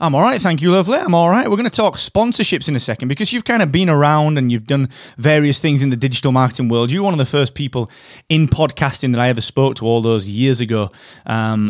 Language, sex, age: English, male, 20-39